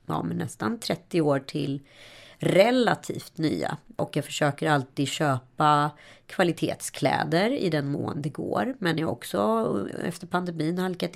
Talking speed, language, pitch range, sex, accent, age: 140 wpm, Swedish, 145-185 Hz, female, native, 30-49